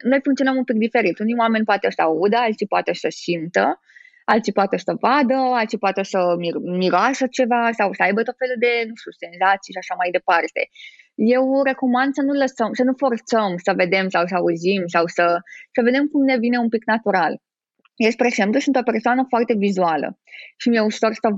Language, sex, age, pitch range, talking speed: Romanian, female, 20-39, 185-255 Hz, 200 wpm